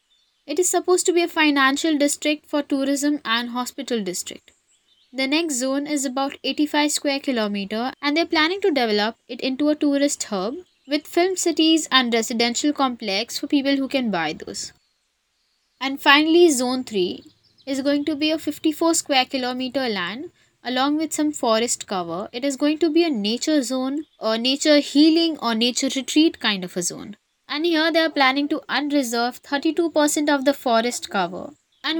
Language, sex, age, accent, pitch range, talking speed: English, female, 20-39, Indian, 245-300 Hz, 175 wpm